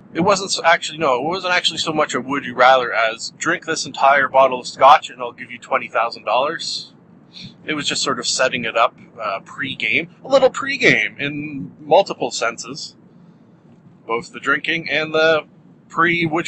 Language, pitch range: English, 140-200 Hz